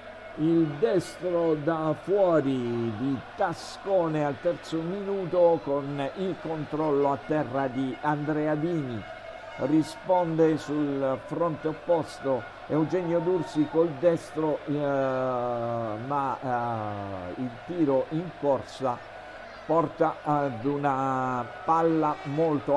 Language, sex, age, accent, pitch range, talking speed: Italian, male, 50-69, native, 130-165 Hz, 100 wpm